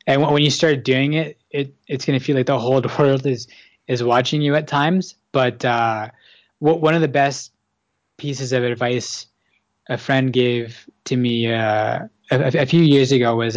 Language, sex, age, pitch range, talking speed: English, male, 20-39, 115-135 Hz, 185 wpm